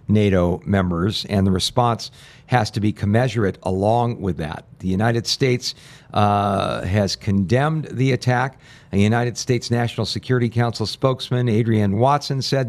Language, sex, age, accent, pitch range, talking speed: English, male, 50-69, American, 110-135 Hz, 140 wpm